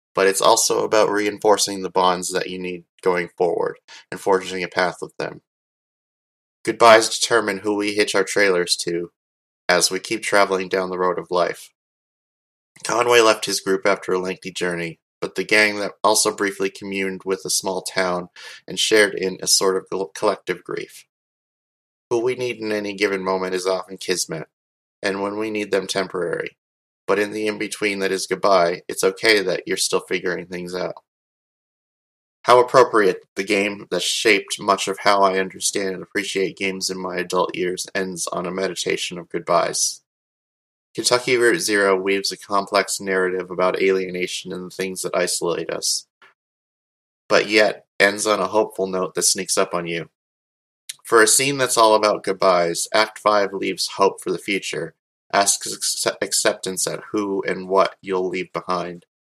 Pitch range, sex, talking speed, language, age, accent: 90-105 Hz, male, 170 wpm, English, 30-49, American